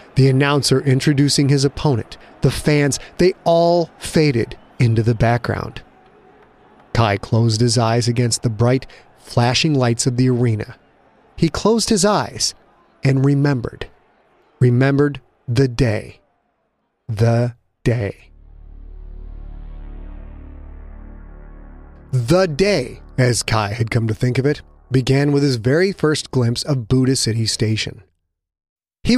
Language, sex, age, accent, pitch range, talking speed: English, male, 30-49, American, 115-155 Hz, 115 wpm